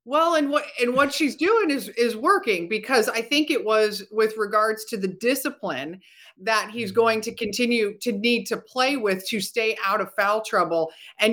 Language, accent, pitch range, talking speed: English, American, 205-270 Hz, 195 wpm